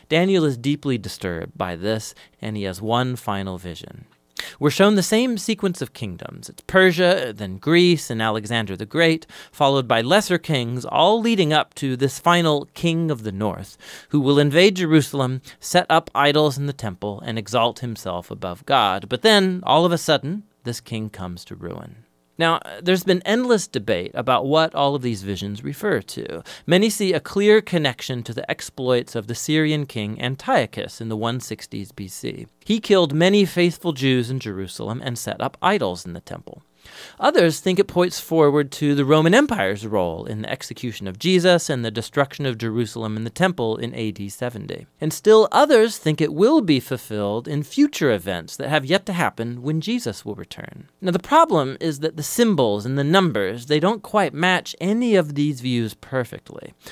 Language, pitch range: English, 115-175 Hz